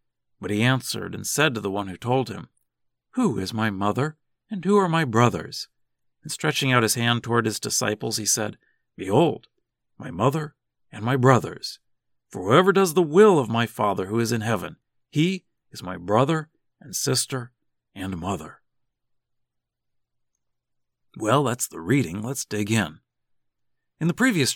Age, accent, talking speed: 50-69, American, 160 wpm